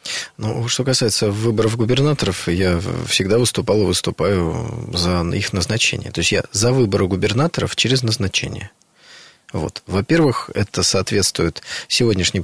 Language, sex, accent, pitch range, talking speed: Russian, male, native, 95-125 Hz, 120 wpm